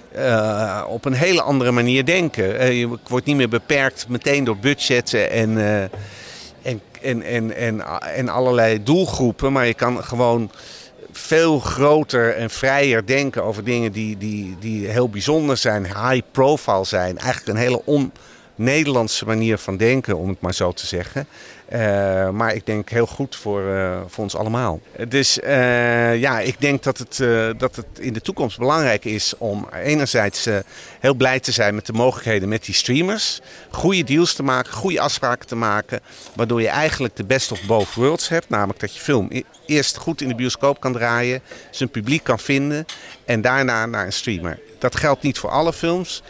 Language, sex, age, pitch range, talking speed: Dutch, male, 50-69, 110-135 Hz, 175 wpm